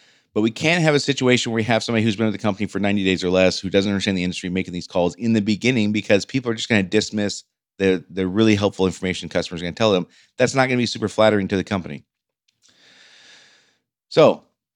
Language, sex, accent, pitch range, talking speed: English, male, American, 95-115 Hz, 250 wpm